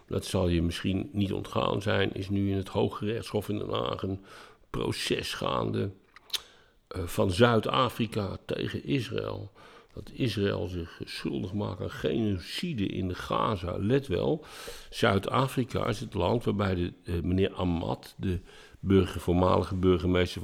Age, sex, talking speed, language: 50-69, male, 135 wpm, Dutch